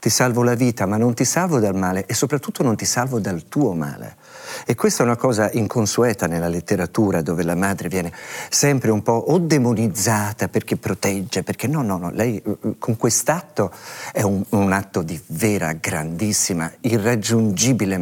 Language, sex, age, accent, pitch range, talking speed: Italian, male, 50-69, native, 95-125 Hz, 175 wpm